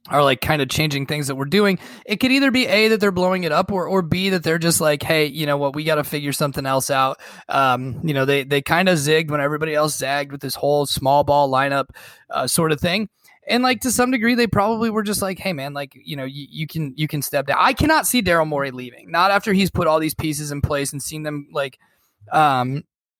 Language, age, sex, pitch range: English, 20-39, male, 140-190 Hz